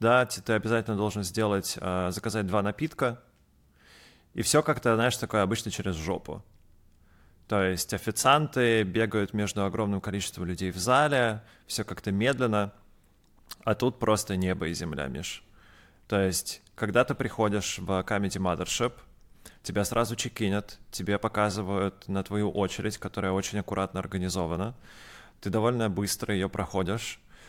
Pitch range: 95-110 Hz